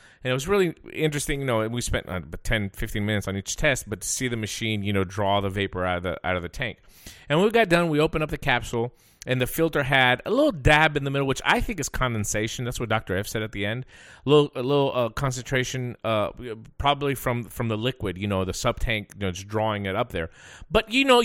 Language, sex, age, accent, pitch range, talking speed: English, male, 30-49, American, 110-170 Hz, 250 wpm